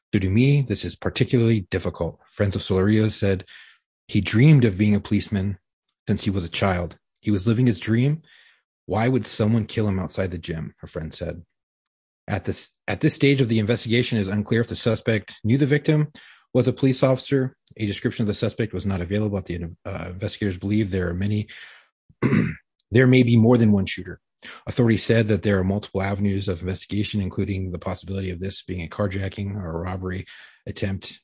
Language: English